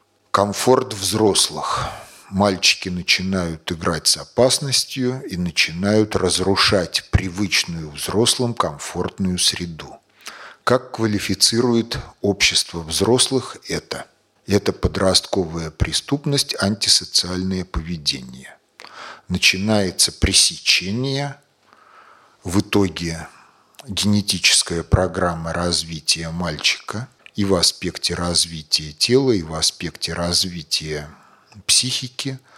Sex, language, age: male, Russian, 40-59